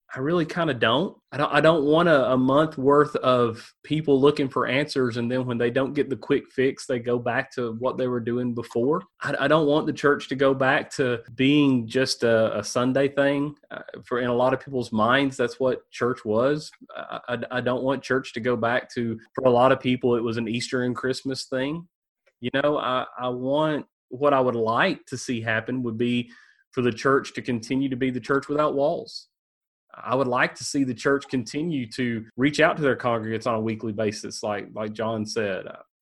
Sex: male